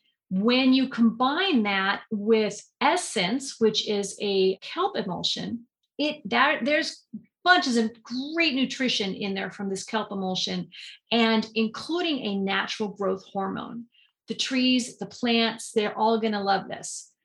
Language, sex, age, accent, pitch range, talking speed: English, female, 30-49, American, 200-245 Hz, 140 wpm